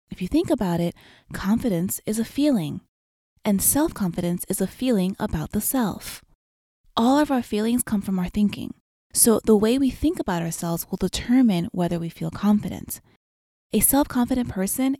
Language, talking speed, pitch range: English, 165 wpm, 190-250 Hz